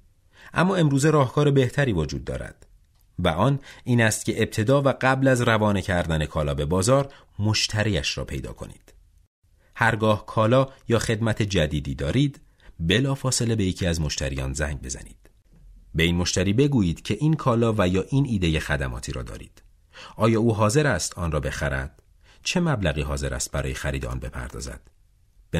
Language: Persian